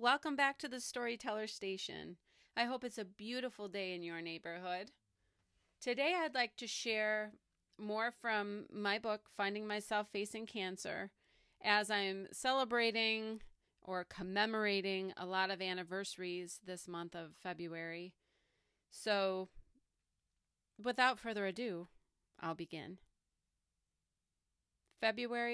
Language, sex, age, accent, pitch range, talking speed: English, female, 30-49, American, 175-215 Hz, 115 wpm